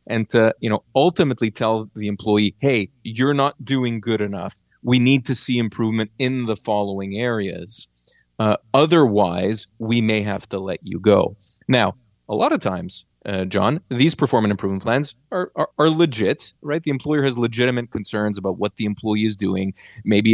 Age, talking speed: 30-49, 175 wpm